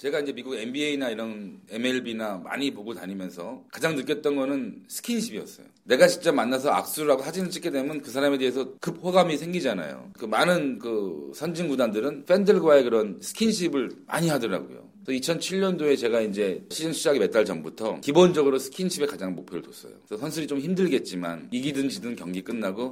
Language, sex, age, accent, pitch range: Korean, male, 40-59, native, 95-155 Hz